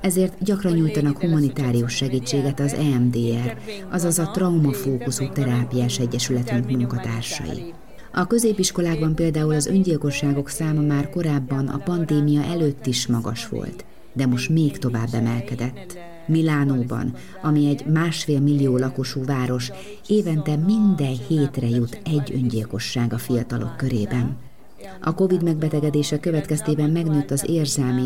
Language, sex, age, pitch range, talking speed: Hungarian, female, 30-49, 125-165 Hz, 120 wpm